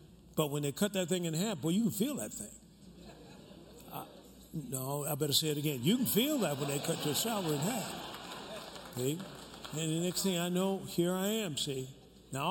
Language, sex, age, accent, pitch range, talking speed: English, male, 50-69, American, 155-220 Hz, 205 wpm